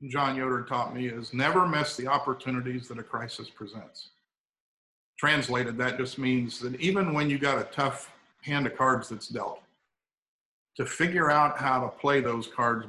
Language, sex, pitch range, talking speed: English, male, 120-140 Hz, 170 wpm